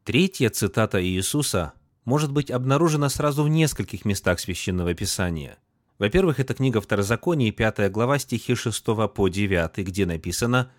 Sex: male